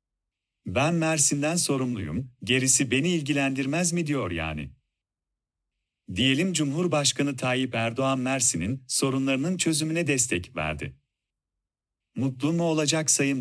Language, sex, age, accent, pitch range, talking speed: Turkish, male, 40-59, native, 115-155 Hz, 100 wpm